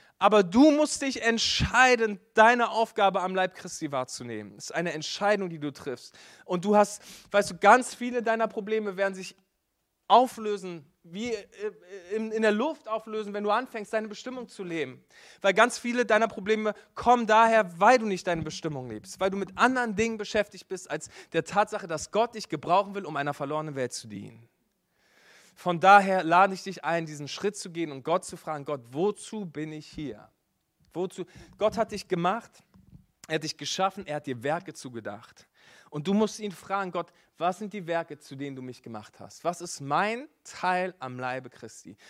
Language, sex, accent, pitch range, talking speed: German, male, German, 155-215 Hz, 185 wpm